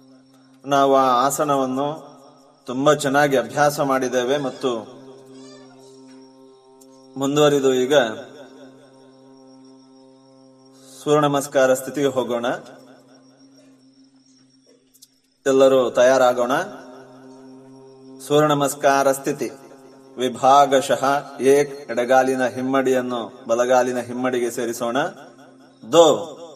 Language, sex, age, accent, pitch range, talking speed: Kannada, male, 30-49, native, 130-140 Hz, 60 wpm